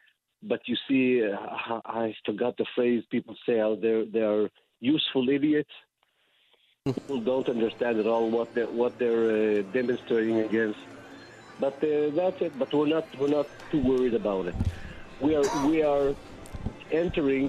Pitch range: 115-135 Hz